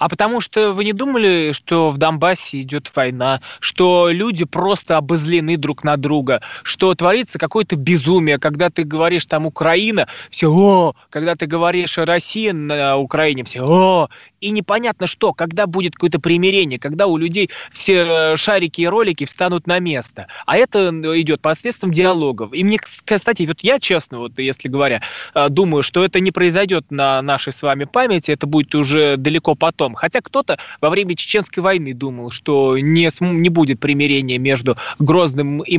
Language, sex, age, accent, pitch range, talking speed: Russian, male, 20-39, native, 145-180 Hz, 165 wpm